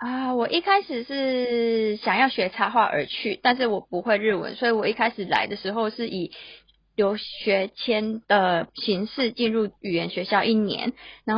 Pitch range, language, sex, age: 190-230 Hz, Chinese, female, 20-39